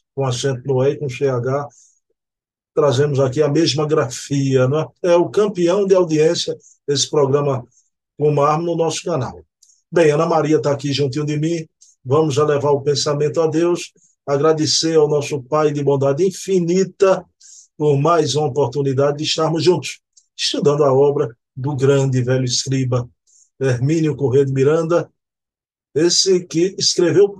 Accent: Brazilian